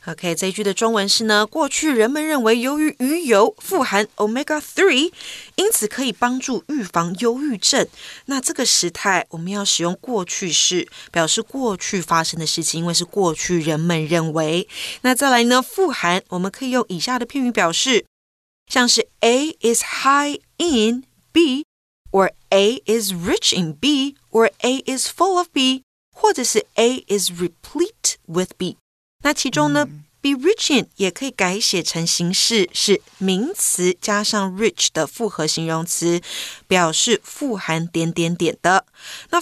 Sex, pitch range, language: female, 180-275 Hz, Chinese